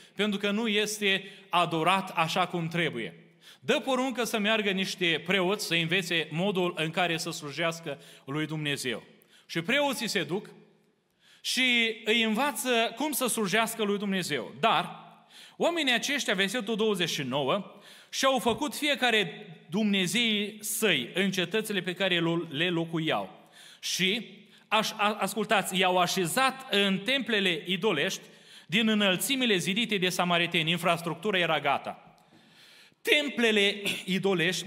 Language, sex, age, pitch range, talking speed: Romanian, male, 30-49, 185-230 Hz, 120 wpm